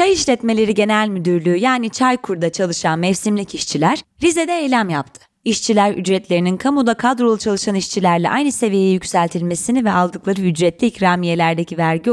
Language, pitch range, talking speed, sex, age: Turkish, 175-245 Hz, 125 wpm, female, 30-49